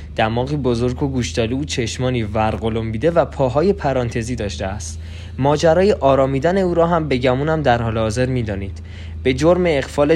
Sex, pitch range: male, 105-140 Hz